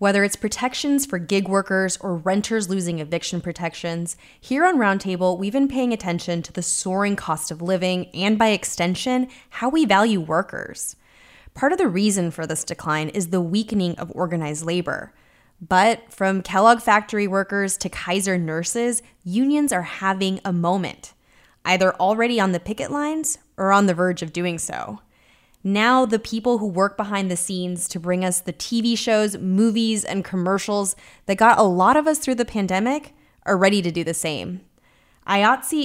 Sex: female